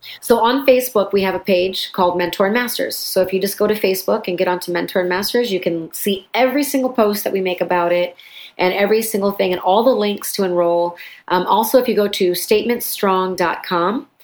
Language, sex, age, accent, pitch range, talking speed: English, female, 30-49, American, 180-210 Hz, 220 wpm